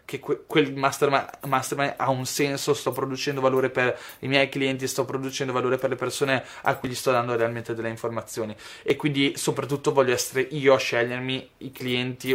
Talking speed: 180 wpm